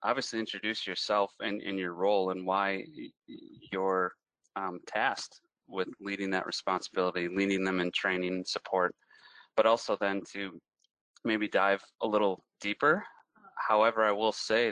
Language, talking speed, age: English, 145 wpm, 30-49